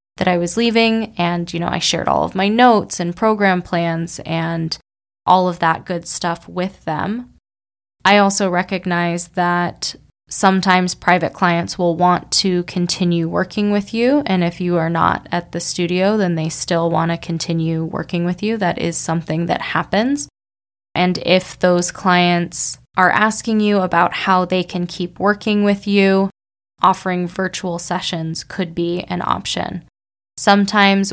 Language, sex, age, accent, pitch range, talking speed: English, female, 20-39, American, 170-185 Hz, 160 wpm